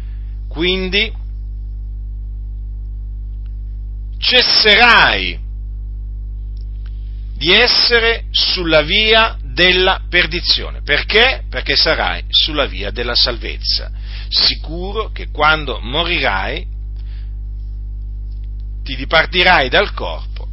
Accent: native